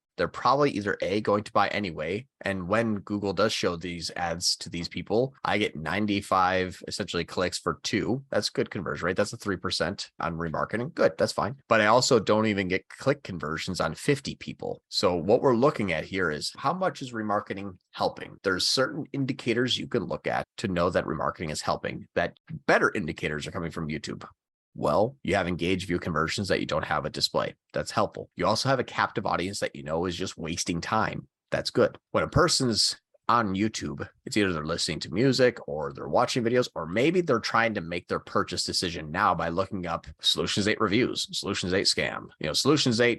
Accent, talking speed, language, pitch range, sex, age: American, 205 wpm, English, 85-120 Hz, male, 30-49